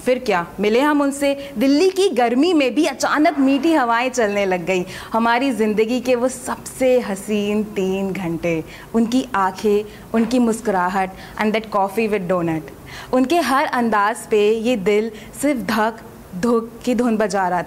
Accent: native